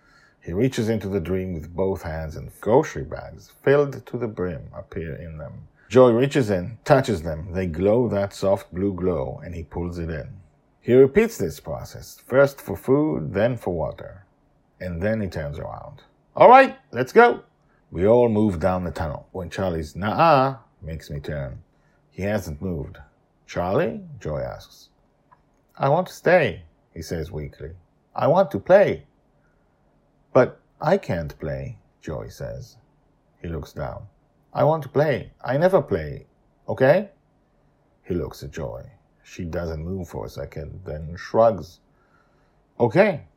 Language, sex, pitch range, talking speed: English, male, 85-135 Hz, 155 wpm